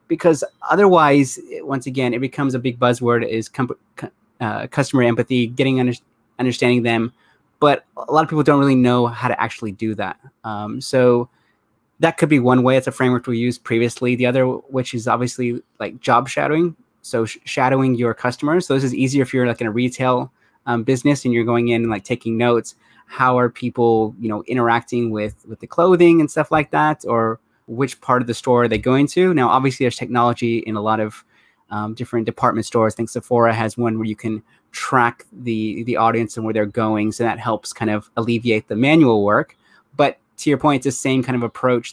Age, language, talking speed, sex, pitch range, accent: 20-39, English, 215 wpm, male, 115-130 Hz, American